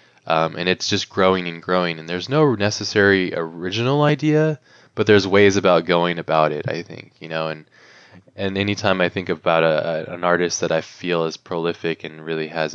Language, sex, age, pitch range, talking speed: English, male, 20-39, 80-100 Hz, 200 wpm